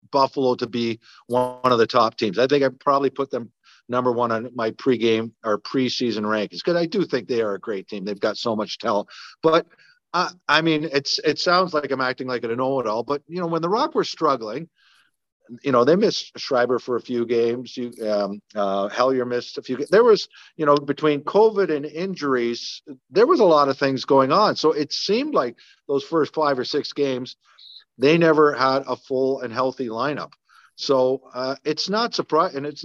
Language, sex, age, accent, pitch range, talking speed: English, male, 50-69, American, 120-150 Hz, 215 wpm